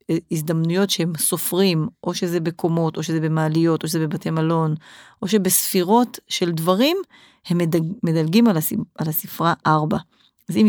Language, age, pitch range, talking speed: Hebrew, 30-49, 165-210 Hz, 135 wpm